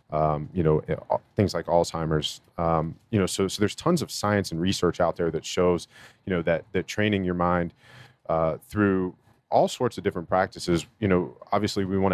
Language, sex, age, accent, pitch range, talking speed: English, male, 40-59, American, 85-100 Hz, 200 wpm